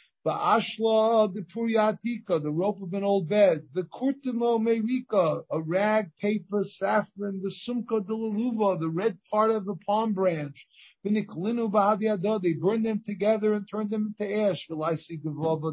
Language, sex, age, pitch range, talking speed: English, male, 50-69, 165-215 Hz, 155 wpm